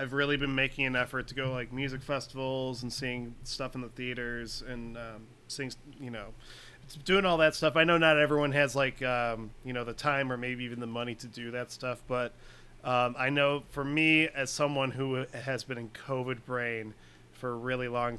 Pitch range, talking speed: 120-140 Hz, 210 wpm